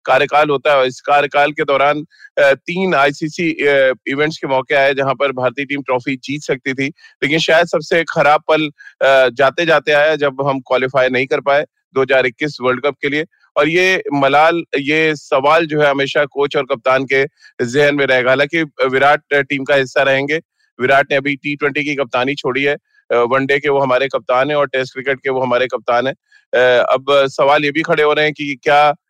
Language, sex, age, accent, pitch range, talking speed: Hindi, male, 30-49, native, 135-155 Hz, 190 wpm